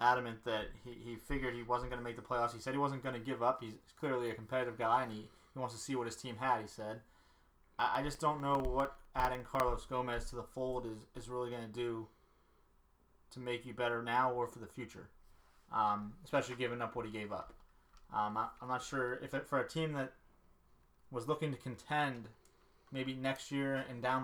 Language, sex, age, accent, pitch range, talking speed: English, male, 20-39, American, 110-125 Hz, 225 wpm